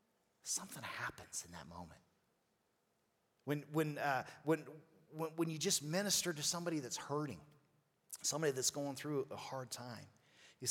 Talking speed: 145 wpm